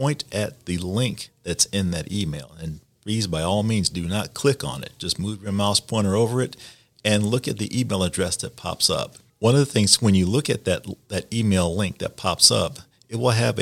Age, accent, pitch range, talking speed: 40-59, American, 90-110 Hz, 230 wpm